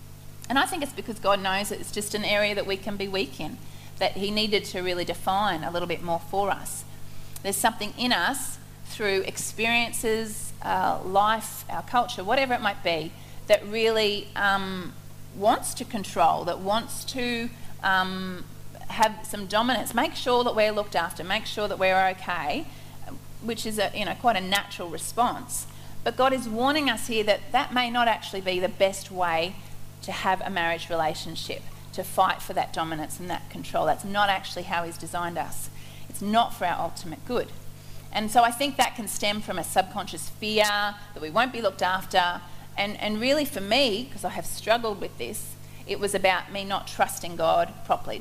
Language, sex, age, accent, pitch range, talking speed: English, female, 30-49, Australian, 175-220 Hz, 190 wpm